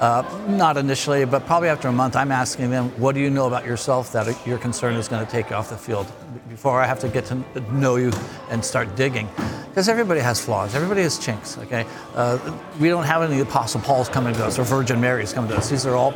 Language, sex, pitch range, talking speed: English, male, 125-150 Hz, 245 wpm